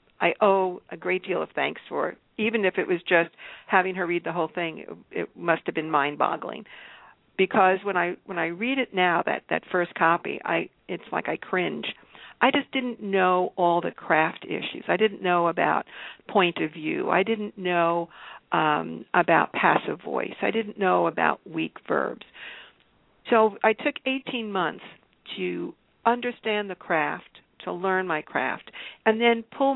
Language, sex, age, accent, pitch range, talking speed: English, female, 50-69, American, 175-215 Hz, 175 wpm